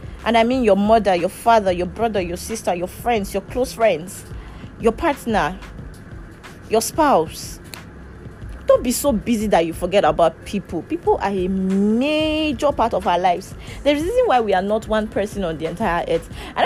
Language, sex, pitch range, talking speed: English, female, 190-260 Hz, 185 wpm